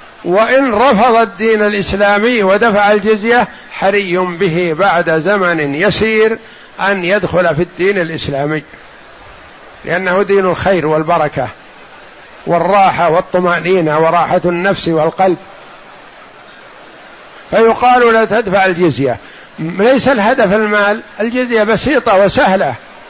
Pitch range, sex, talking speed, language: 170-205 Hz, male, 90 wpm, Arabic